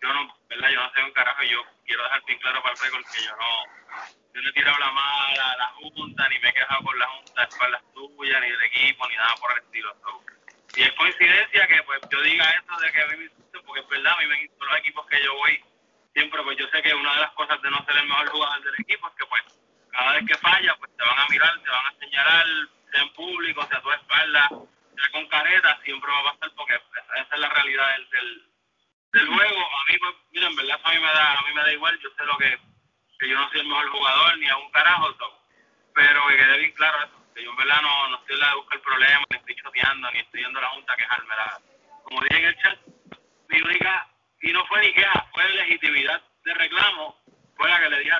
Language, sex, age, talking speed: Spanish, male, 20-39, 265 wpm